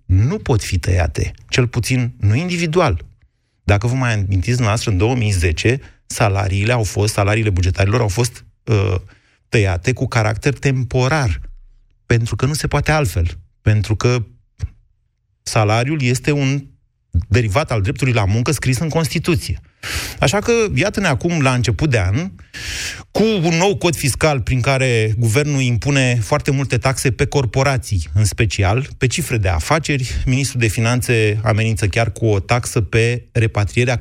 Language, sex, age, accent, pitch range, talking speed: Romanian, male, 30-49, native, 100-135 Hz, 150 wpm